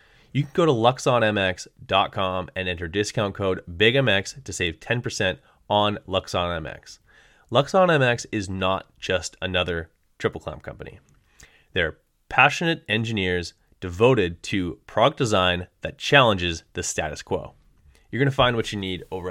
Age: 20-39